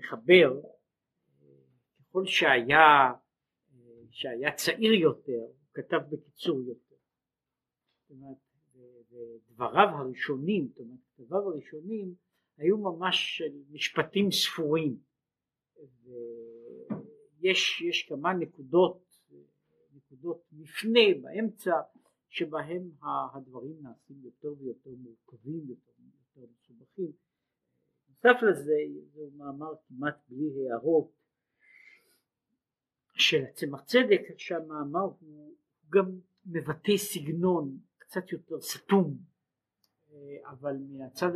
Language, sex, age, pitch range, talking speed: Hebrew, male, 50-69, 125-170 Hz, 80 wpm